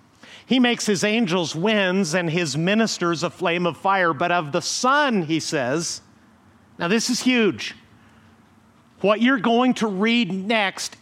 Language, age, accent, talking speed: English, 50-69, American, 150 wpm